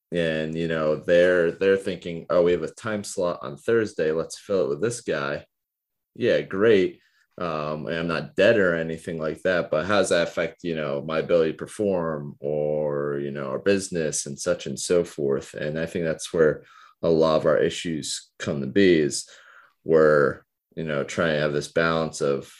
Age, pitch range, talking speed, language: 30-49, 75-90 Hz, 200 wpm, English